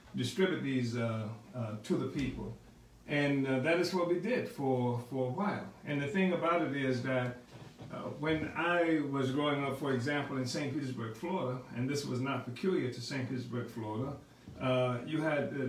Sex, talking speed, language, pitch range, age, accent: male, 190 wpm, English, 125-150 Hz, 60-79, American